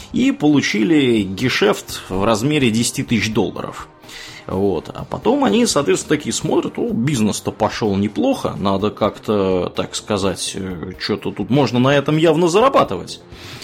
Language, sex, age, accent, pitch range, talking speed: Russian, male, 20-39, native, 105-145 Hz, 125 wpm